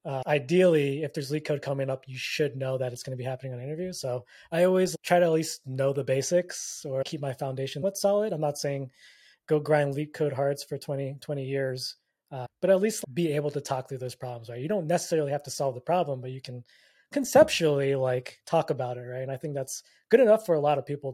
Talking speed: 250 wpm